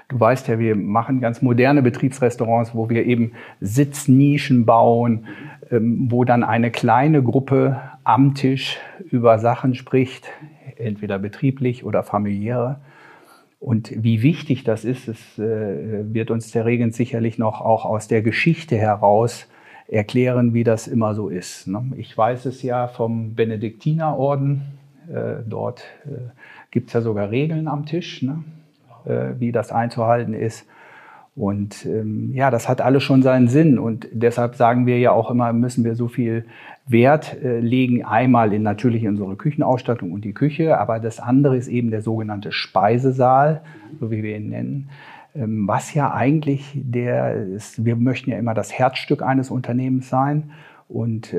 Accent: German